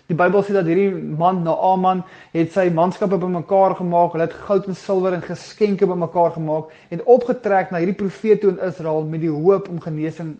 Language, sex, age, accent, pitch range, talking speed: English, male, 20-39, Dutch, 170-205 Hz, 200 wpm